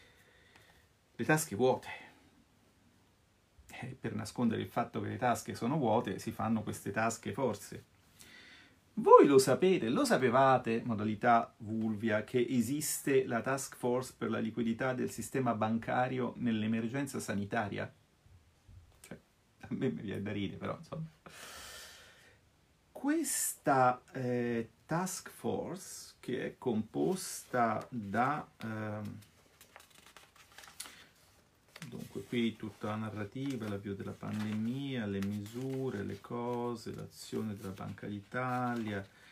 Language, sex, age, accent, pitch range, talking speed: Italian, male, 40-59, native, 105-130 Hz, 110 wpm